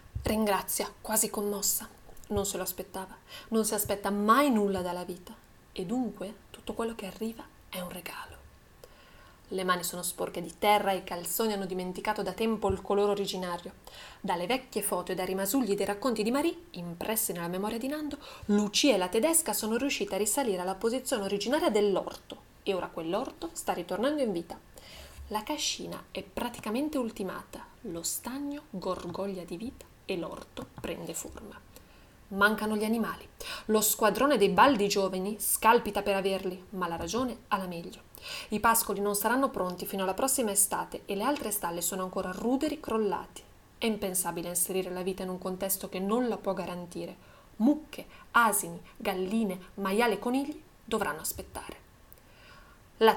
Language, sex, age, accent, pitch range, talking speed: Italian, female, 30-49, native, 190-235 Hz, 160 wpm